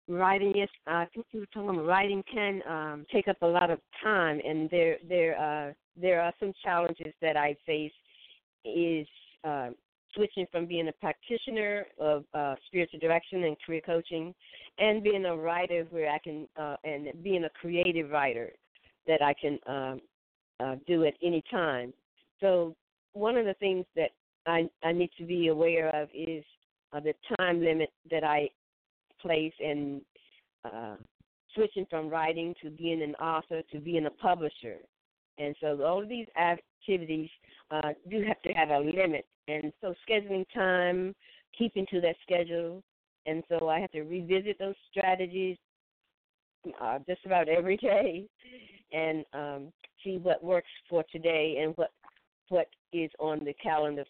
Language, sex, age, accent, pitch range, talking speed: English, female, 50-69, American, 155-190 Hz, 160 wpm